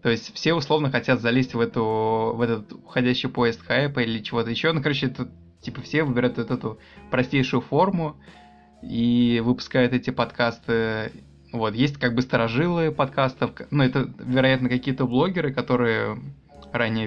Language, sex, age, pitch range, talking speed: Russian, male, 20-39, 115-130 Hz, 150 wpm